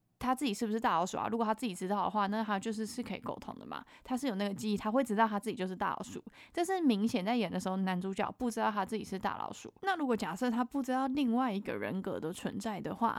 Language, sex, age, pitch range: Chinese, female, 20-39, 195-245 Hz